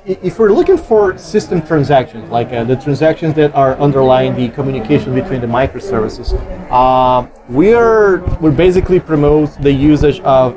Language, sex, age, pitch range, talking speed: English, male, 30-49, 135-165 Hz, 155 wpm